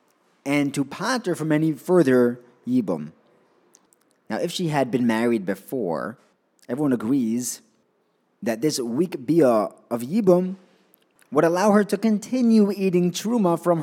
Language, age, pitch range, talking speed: English, 30-49, 130-175 Hz, 130 wpm